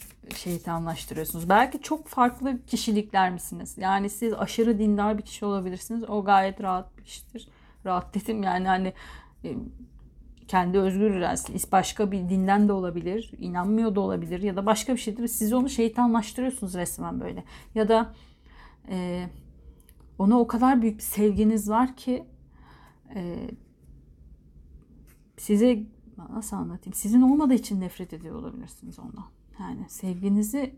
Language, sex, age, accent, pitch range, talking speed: Turkish, female, 40-59, native, 180-225 Hz, 130 wpm